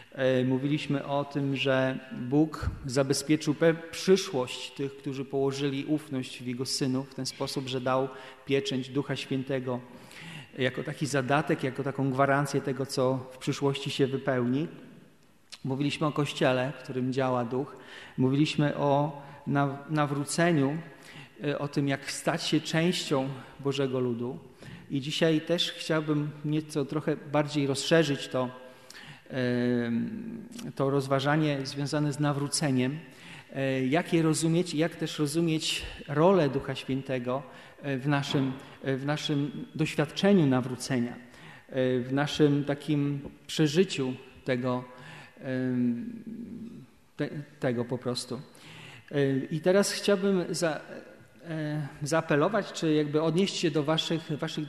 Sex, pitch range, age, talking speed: male, 130-155 Hz, 40-59, 110 wpm